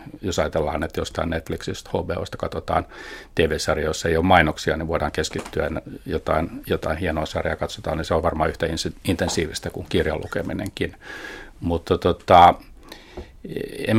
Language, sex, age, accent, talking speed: Finnish, male, 50-69, native, 135 wpm